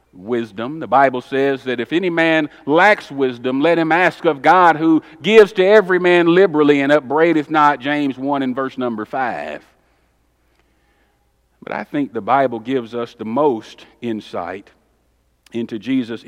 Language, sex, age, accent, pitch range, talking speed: English, male, 50-69, American, 135-200 Hz, 155 wpm